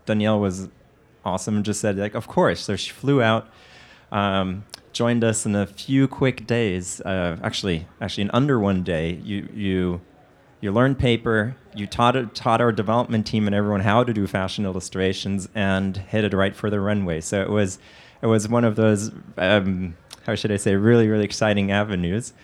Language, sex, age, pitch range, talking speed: English, male, 30-49, 95-110 Hz, 185 wpm